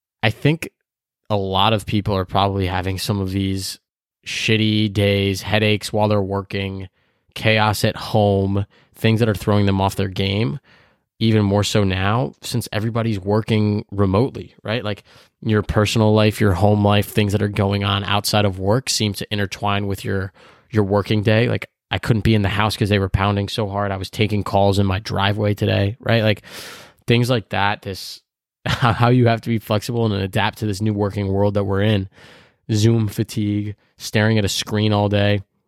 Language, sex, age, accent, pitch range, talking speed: English, male, 20-39, American, 100-110 Hz, 190 wpm